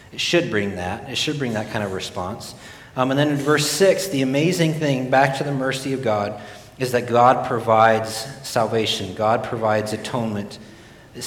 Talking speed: 185 wpm